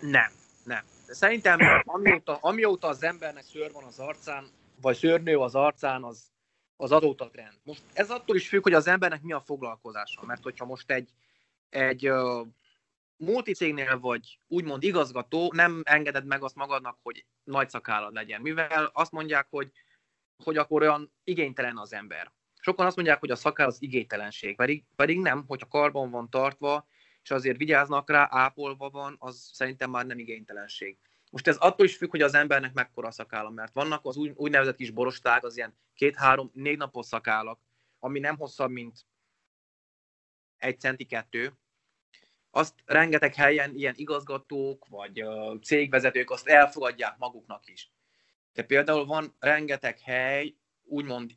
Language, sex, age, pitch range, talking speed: Hungarian, male, 20-39, 125-150 Hz, 155 wpm